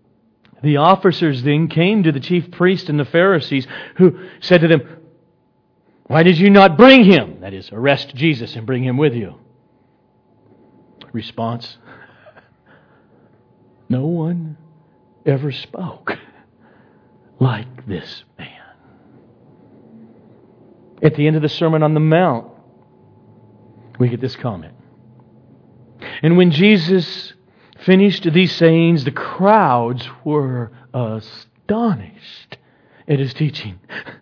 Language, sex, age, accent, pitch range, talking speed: English, male, 50-69, American, 120-180 Hz, 110 wpm